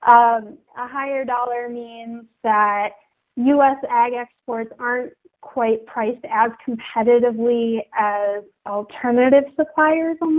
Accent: American